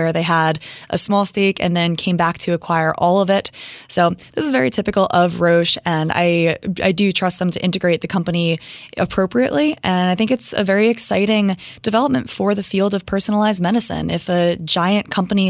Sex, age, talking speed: female, 20-39, 195 wpm